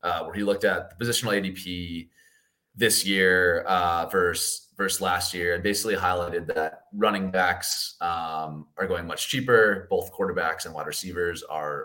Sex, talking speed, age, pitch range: male, 160 wpm, 20-39, 90-115 Hz